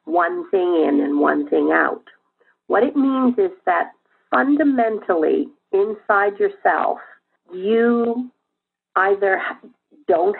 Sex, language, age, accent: female, English, 50-69, American